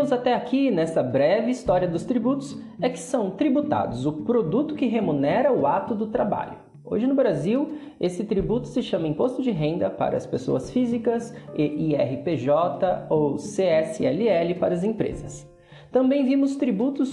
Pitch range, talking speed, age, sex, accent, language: 175-255 Hz, 150 wpm, 20-39, male, Brazilian, Portuguese